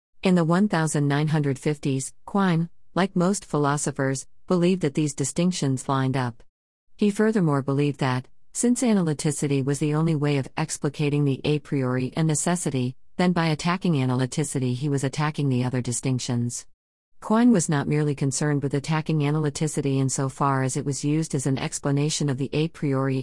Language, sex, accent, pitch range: English, female, American, 135-160 Hz